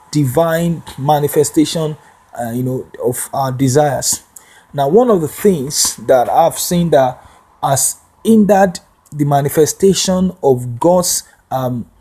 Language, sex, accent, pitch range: English, male, Nigerian, 135-190 Hz